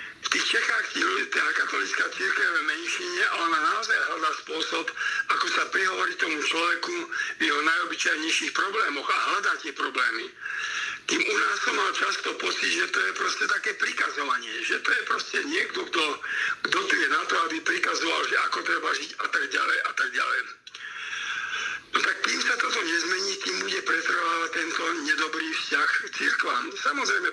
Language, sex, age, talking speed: Slovak, male, 50-69, 165 wpm